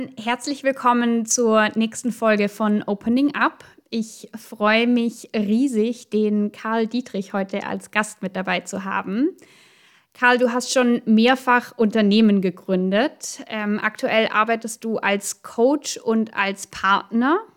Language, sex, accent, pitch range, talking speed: German, female, German, 210-250 Hz, 130 wpm